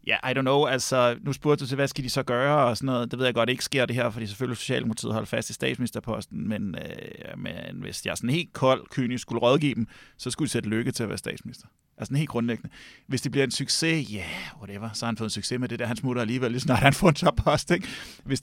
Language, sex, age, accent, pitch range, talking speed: Danish, male, 30-49, native, 110-135 Hz, 285 wpm